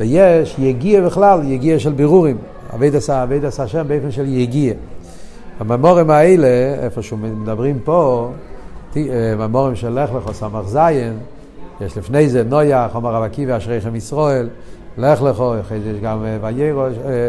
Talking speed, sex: 150 wpm, male